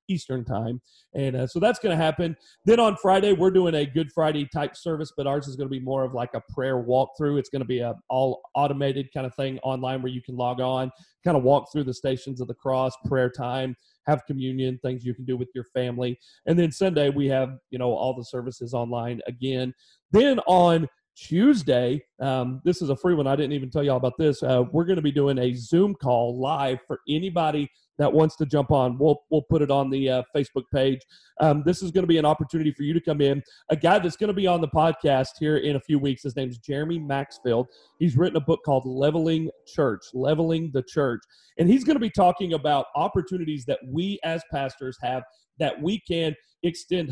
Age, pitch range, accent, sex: 40-59, 130-160 Hz, American, male